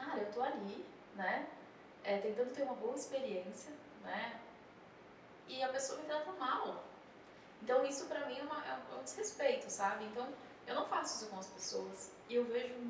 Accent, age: Brazilian, 10-29